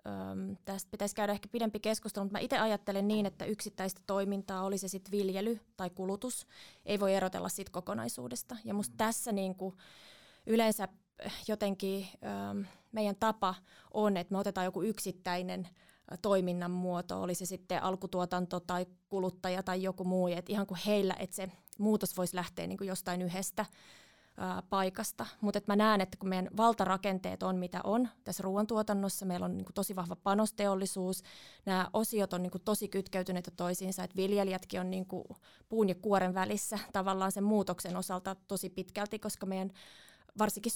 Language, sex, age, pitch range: Finnish, female, 20-39, 180-205 Hz